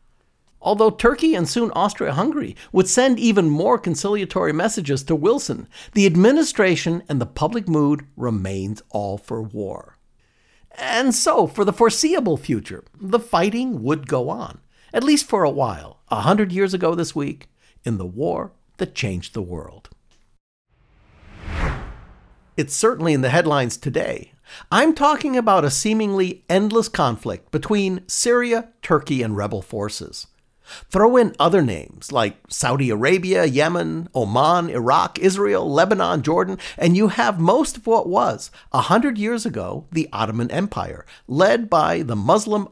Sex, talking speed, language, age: male, 145 wpm, English, 60-79